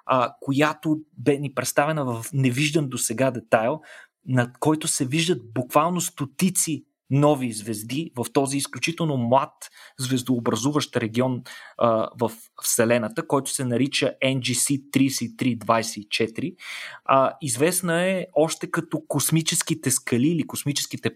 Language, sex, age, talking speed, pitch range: Bulgarian, male, 20-39, 100 wpm, 120-150 Hz